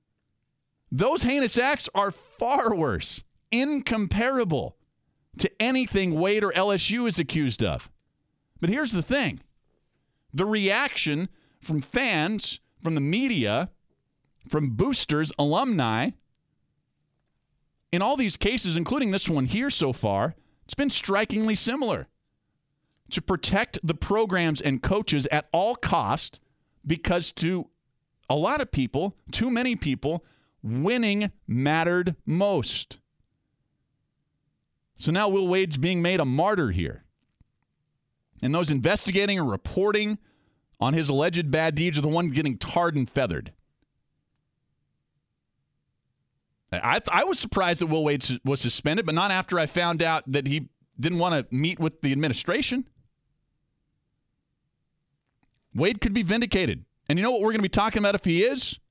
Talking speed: 135 wpm